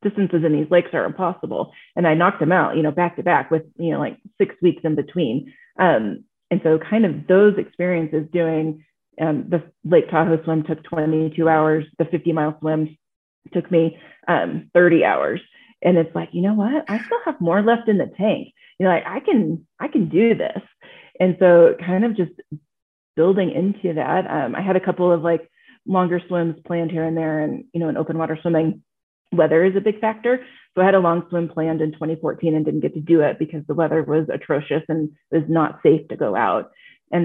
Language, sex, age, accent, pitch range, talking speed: English, female, 30-49, American, 160-185 Hz, 215 wpm